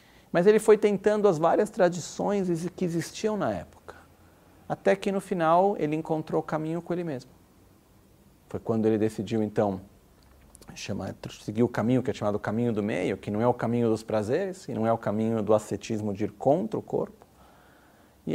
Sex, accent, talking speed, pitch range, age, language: male, Brazilian, 190 wpm, 100-140 Hz, 40-59, Italian